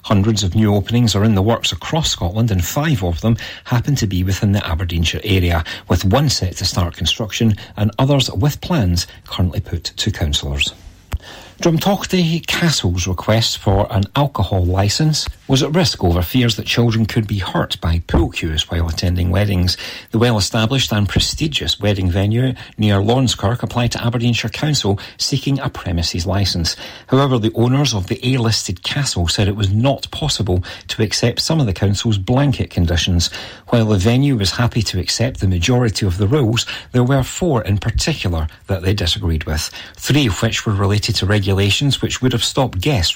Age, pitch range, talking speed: 40-59, 90-120 Hz, 175 wpm